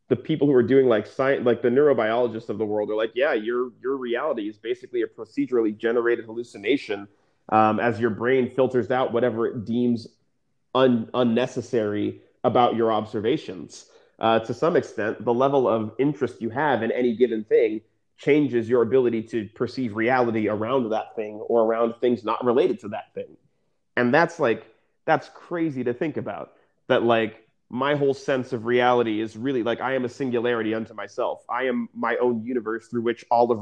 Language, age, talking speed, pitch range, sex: English, 30-49, 185 wpm, 115-135 Hz, male